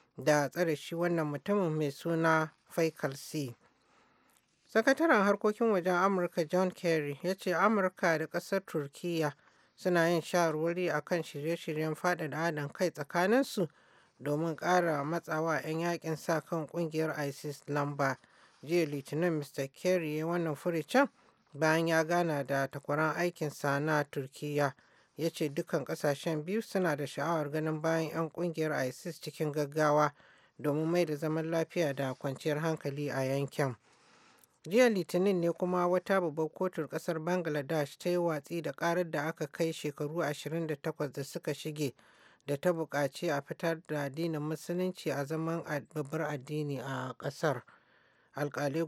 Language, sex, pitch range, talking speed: English, male, 150-175 Hz, 150 wpm